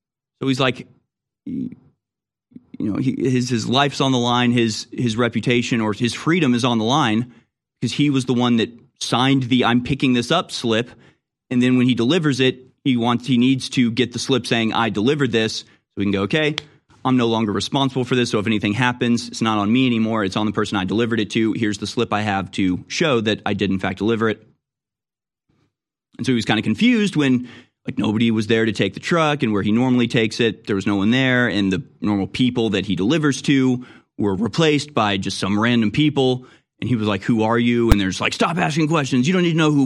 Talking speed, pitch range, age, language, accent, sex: 235 wpm, 110-140 Hz, 30-49, English, American, male